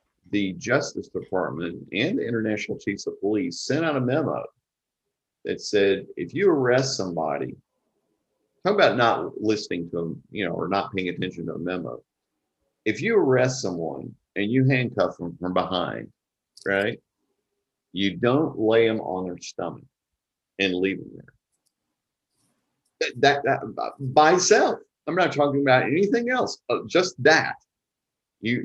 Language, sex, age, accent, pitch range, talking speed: English, male, 50-69, American, 95-140 Hz, 145 wpm